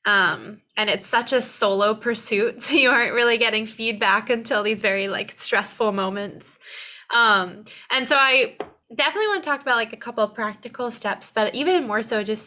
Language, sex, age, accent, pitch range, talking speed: English, female, 20-39, American, 200-240 Hz, 190 wpm